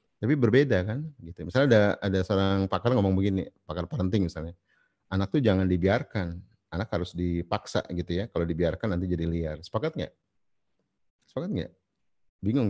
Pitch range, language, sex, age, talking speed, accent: 90-115 Hz, Indonesian, male, 30-49, 155 wpm, native